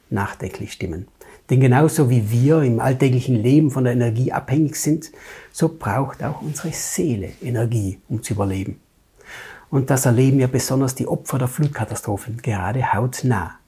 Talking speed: 150 wpm